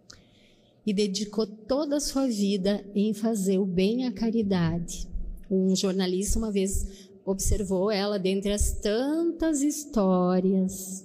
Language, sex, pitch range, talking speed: Portuguese, female, 200-245 Hz, 120 wpm